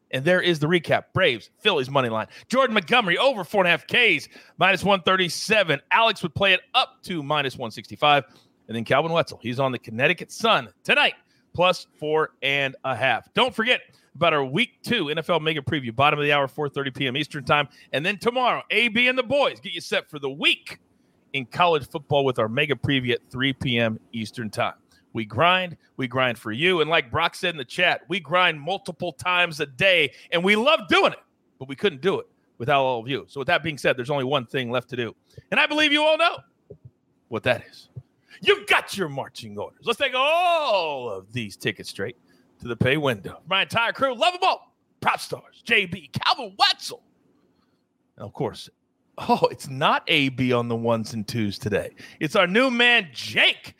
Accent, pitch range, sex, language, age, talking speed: American, 130-200 Hz, male, English, 40-59, 205 wpm